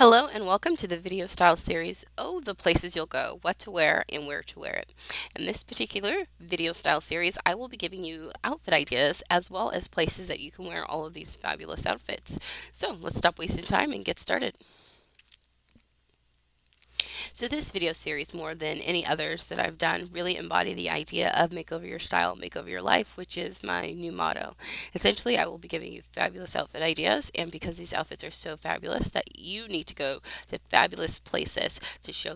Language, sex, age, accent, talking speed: English, female, 20-39, American, 200 wpm